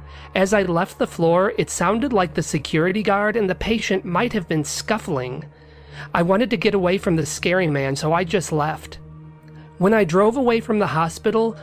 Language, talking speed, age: English, 195 wpm, 30-49